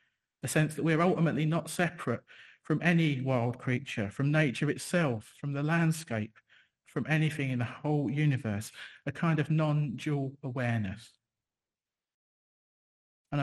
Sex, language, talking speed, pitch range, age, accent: male, English, 125 wpm, 115-145 Hz, 40-59, British